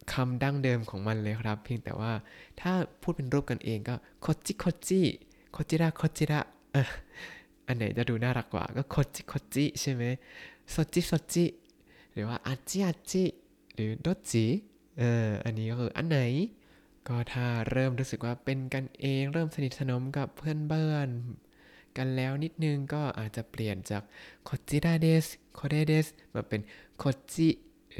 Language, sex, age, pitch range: Thai, male, 20-39, 115-150 Hz